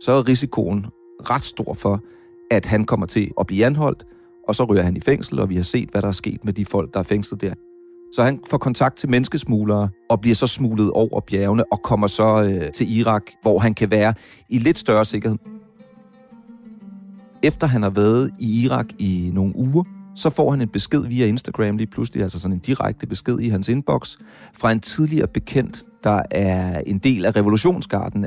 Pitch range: 100-145 Hz